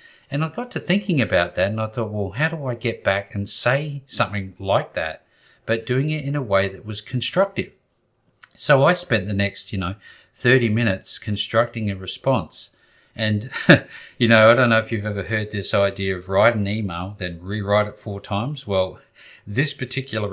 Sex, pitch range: male, 100-130 Hz